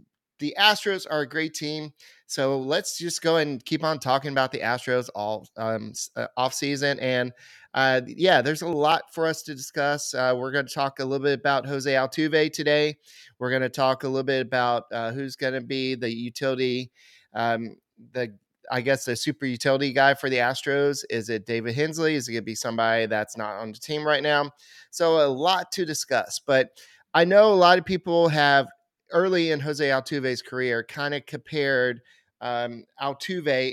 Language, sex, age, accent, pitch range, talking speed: English, male, 30-49, American, 125-155 Hz, 190 wpm